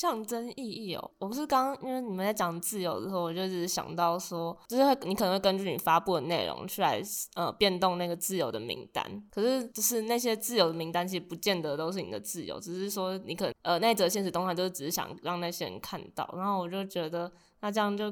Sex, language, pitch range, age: female, Chinese, 170-205 Hz, 10-29